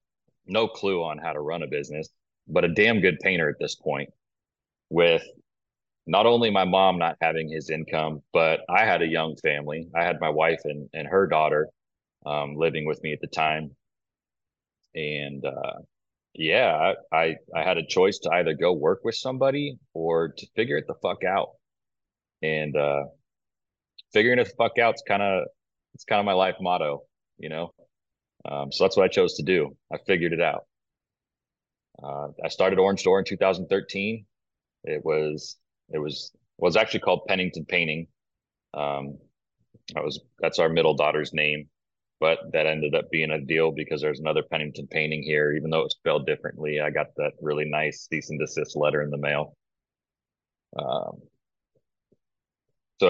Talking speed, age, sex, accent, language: 175 wpm, 30-49, male, American, English